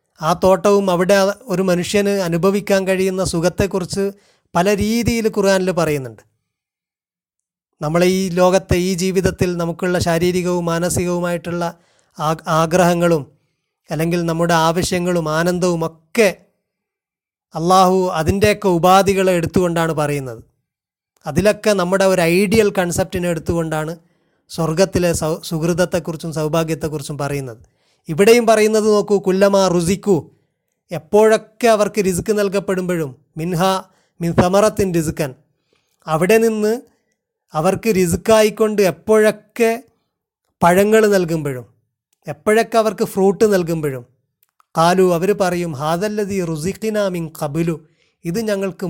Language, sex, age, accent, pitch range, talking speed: Malayalam, male, 30-49, native, 165-200 Hz, 90 wpm